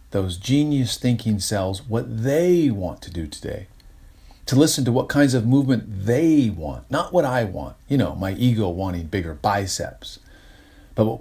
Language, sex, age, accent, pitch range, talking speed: English, male, 40-59, American, 100-135 Hz, 165 wpm